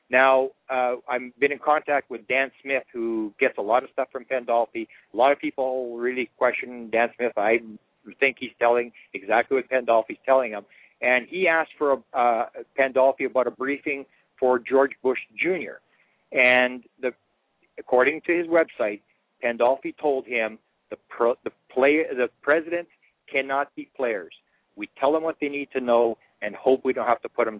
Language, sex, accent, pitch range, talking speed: English, male, American, 115-145 Hz, 175 wpm